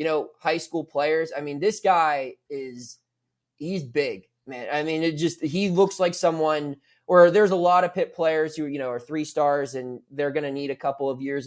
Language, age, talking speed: English, 20-39, 225 wpm